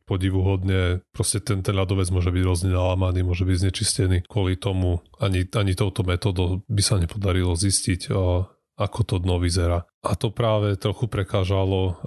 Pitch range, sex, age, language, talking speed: 90-105 Hz, male, 30-49, Slovak, 155 wpm